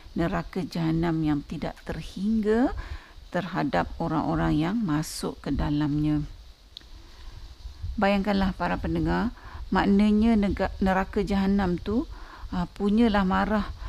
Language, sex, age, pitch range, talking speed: Malay, female, 50-69, 165-220 Hz, 90 wpm